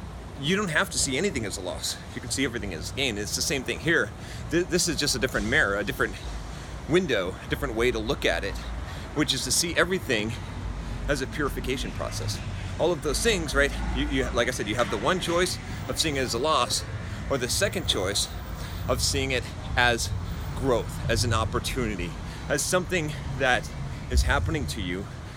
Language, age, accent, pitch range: English, 30-49, American, 100-130 Hz